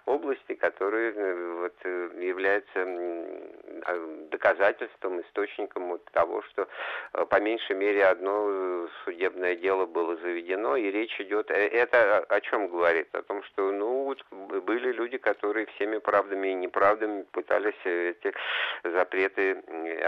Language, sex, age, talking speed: Russian, male, 50-69, 120 wpm